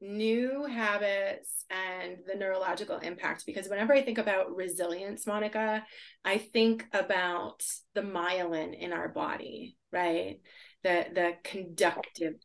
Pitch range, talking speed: 185-235 Hz, 120 wpm